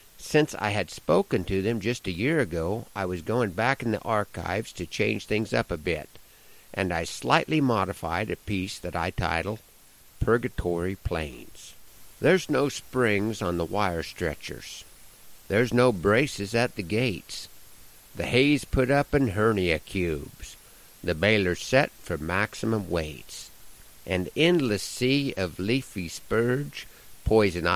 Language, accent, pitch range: English, American, 90-125 Hz